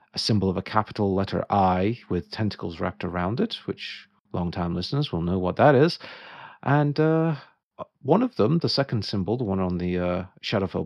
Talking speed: 190 wpm